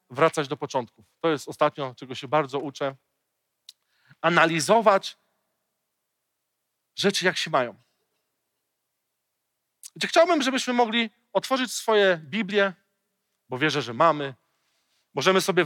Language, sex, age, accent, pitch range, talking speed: Polish, male, 40-59, native, 160-245 Hz, 105 wpm